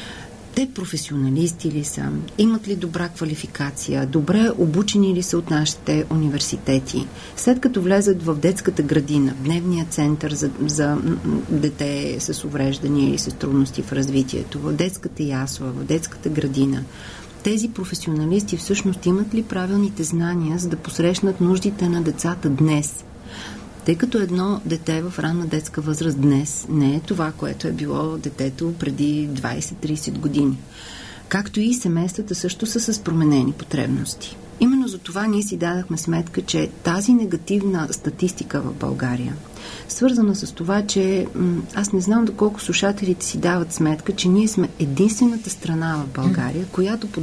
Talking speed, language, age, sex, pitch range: 150 wpm, Bulgarian, 40-59, female, 150-200 Hz